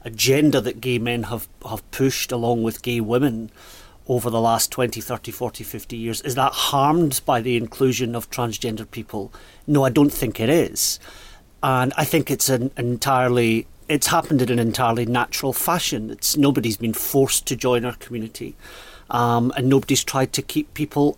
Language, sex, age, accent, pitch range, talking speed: English, male, 40-59, British, 115-135 Hz, 175 wpm